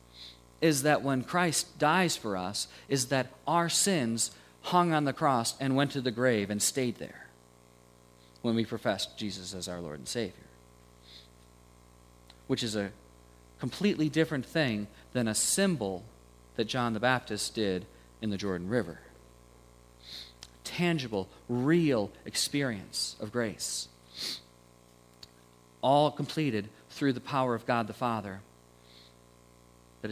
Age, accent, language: 40-59, American, English